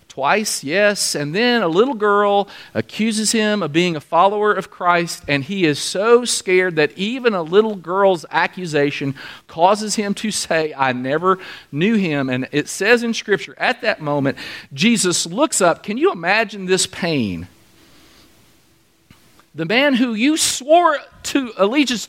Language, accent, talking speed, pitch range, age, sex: English, American, 155 wpm, 175-235 Hz, 40-59, male